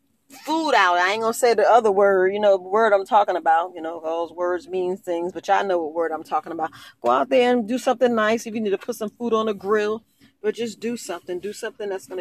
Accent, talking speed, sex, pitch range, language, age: American, 265 wpm, female, 190-240 Hz, English, 40-59